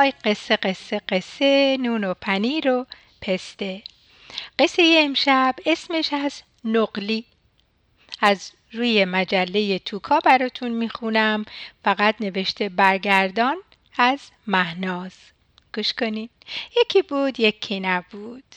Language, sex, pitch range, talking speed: Persian, female, 220-300 Hz, 95 wpm